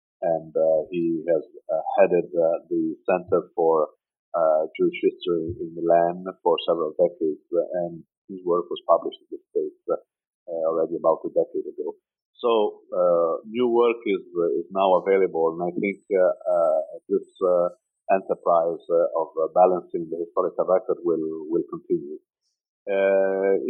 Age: 50-69